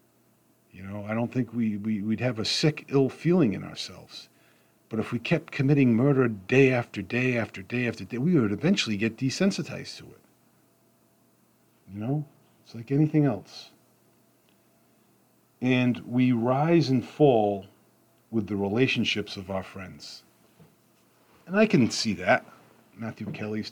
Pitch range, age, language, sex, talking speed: 110-145 Hz, 50-69, English, male, 150 wpm